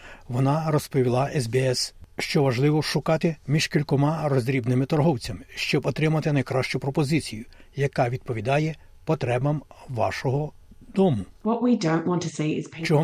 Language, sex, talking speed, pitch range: Ukrainian, male, 95 wpm, 130-155 Hz